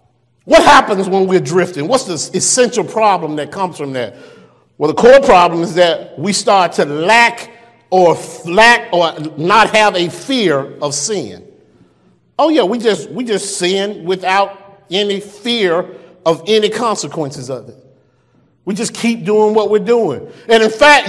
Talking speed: 160 wpm